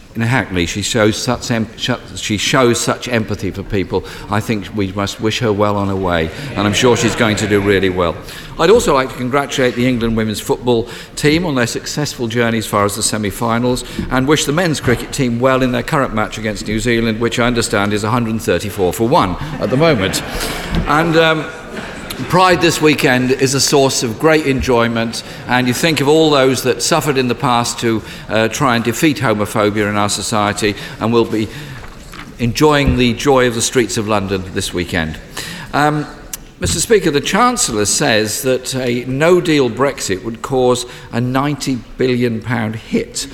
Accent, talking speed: British, 185 wpm